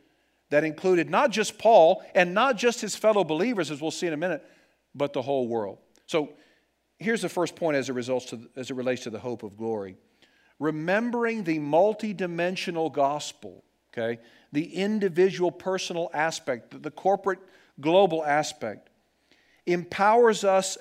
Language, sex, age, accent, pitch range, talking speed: English, male, 50-69, American, 140-195 Hz, 155 wpm